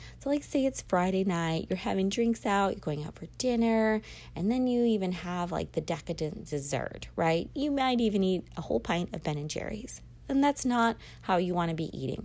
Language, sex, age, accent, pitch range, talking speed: English, female, 30-49, American, 160-230 Hz, 215 wpm